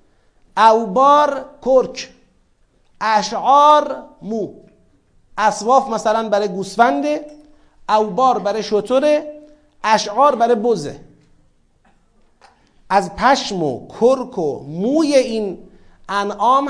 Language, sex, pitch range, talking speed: Persian, male, 210-270 Hz, 80 wpm